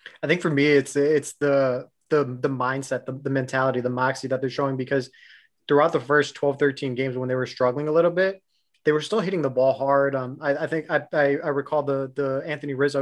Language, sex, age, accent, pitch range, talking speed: English, male, 20-39, American, 135-150 Hz, 235 wpm